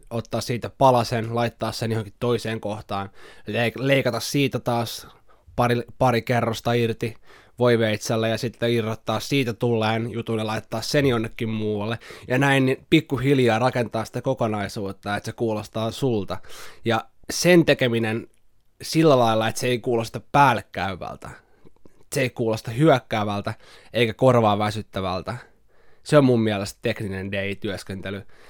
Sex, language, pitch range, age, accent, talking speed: male, Finnish, 105-125 Hz, 20-39, native, 135 wpm